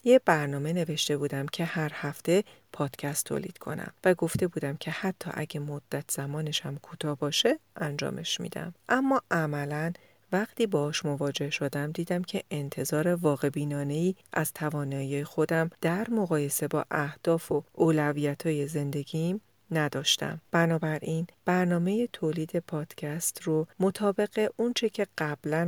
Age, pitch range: 40-59, 145-170 Hz